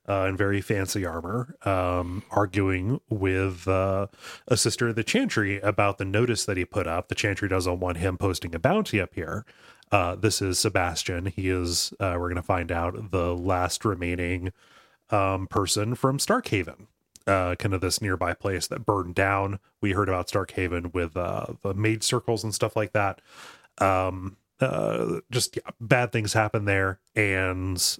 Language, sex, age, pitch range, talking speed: English, male, 30-49, 95-110 Hz, 170 wpm